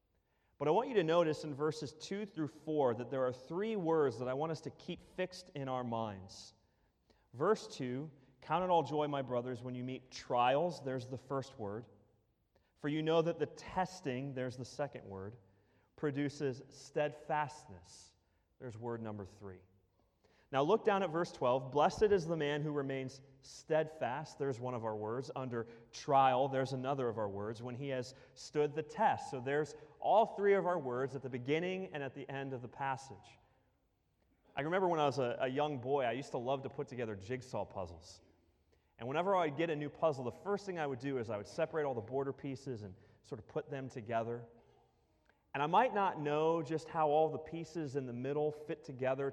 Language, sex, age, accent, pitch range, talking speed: English, male, 30-49, American, 120-155 Hz, 200 wpm